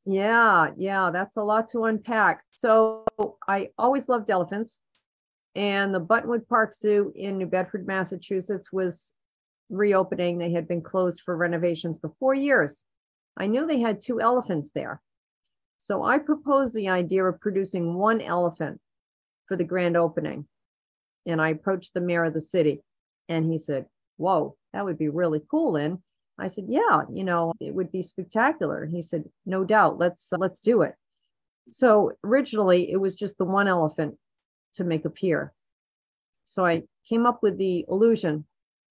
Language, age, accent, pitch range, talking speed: English, 50-69, American, 170-210 Hz, 165 wpm